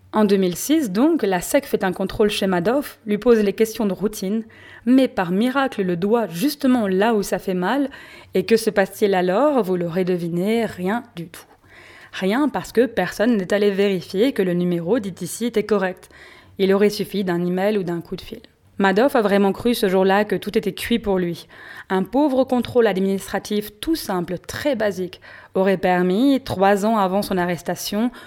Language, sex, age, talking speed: French, female, 20-39, 190 wpm